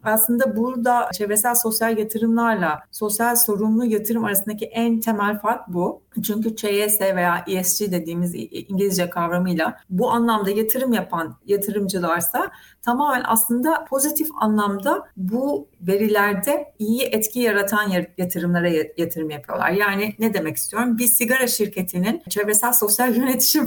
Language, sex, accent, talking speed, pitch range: Turkish, female, native, 120 wpm, 190-235 Hz